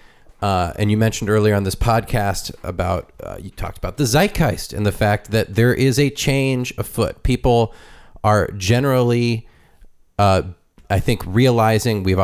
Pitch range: 95-120 Hz